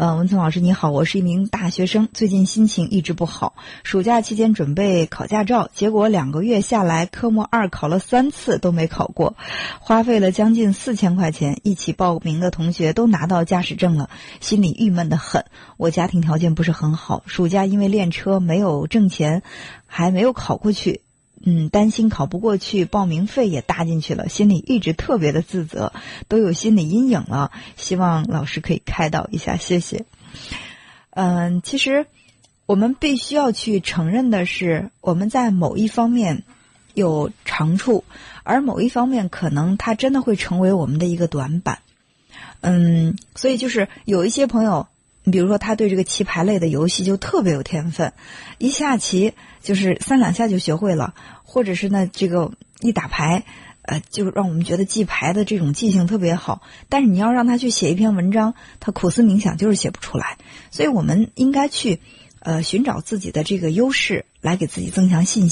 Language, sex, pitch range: Chinese, female, 170-220 Hz